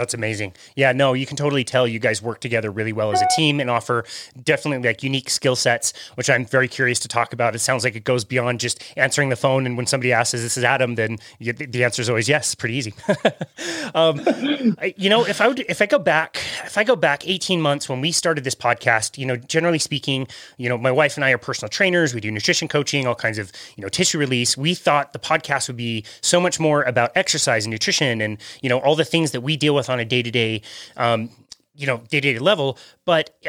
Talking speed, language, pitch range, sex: 245 wpm, English, 125-160 Hz, male